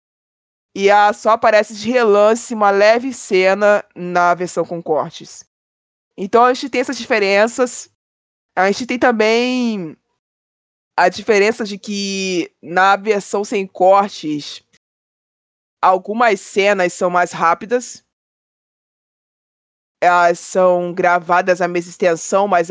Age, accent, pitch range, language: 20-39, Brazilian, 175-220 Hz, Portuguese